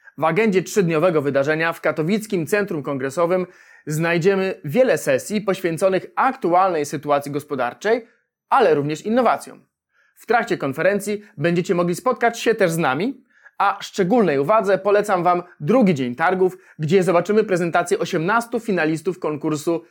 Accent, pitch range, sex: native, 155-210 Hz, male